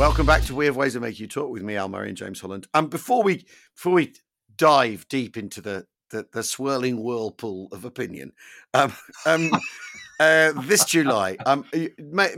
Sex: male